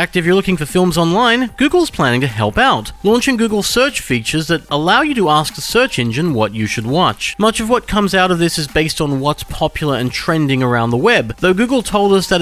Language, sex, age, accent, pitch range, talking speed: English, male, 30-49, Australian, 125-195 Hz, 245 wpm